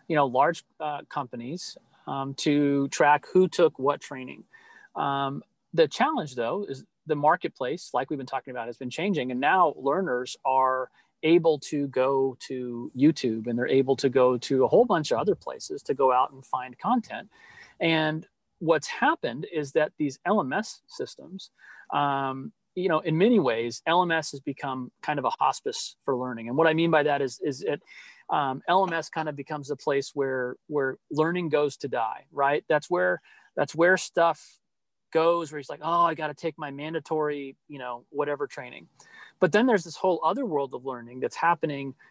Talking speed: 185 wpm